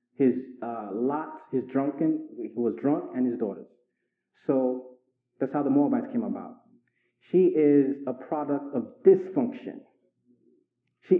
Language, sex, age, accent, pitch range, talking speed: English, male, 30-49, American, 140-220 Hz, 135 wpm